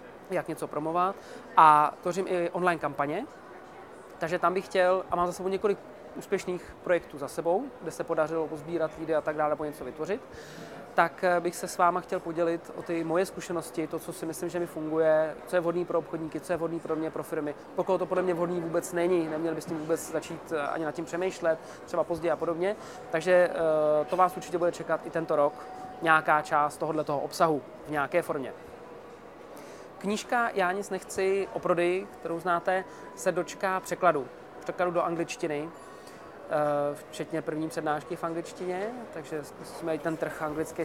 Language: Czech